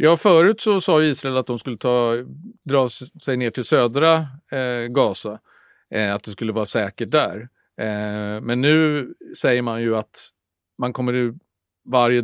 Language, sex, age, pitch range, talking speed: English, male, 50-69, 110-125 Hz, 145 wpm